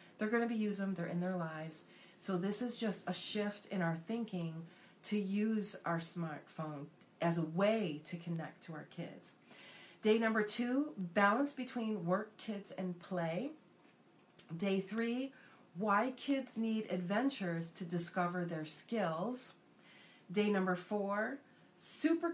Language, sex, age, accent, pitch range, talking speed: English, female, 40-59, American, 170-215 Hz, 140 wpm